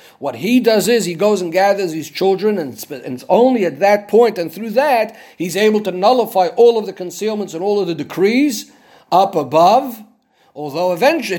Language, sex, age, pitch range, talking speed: English, male, 50-69, 175-215 Hz, 190 wpm